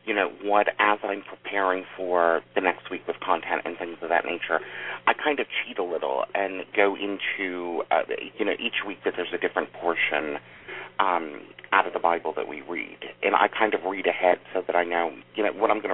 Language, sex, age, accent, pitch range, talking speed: English, male, 40-59, American, 90-105 Hz, 220 wpm